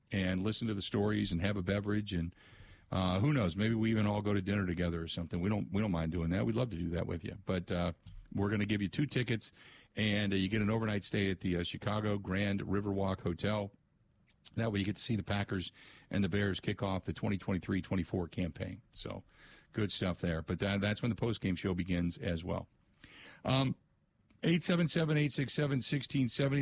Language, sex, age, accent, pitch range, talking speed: English, male, 50-69, American, 95-120 Hz, 210 wpm